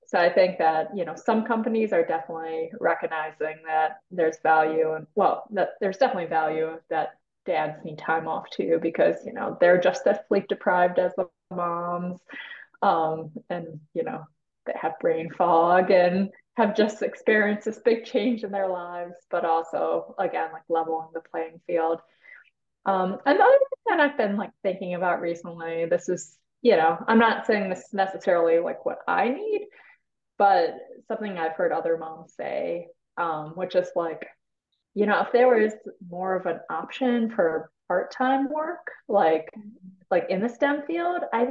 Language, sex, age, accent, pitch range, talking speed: English, female, 20-39, American, 165-235 Hz, 170 wpm